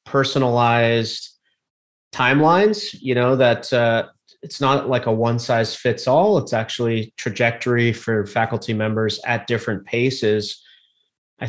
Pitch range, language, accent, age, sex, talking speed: 110-130 Hz, English, American, 30-49, male, 125 wpm